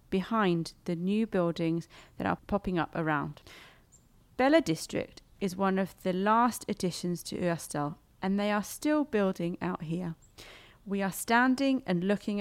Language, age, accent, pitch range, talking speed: Danish, 30-49, British, 165-205 Hz, 150 wpm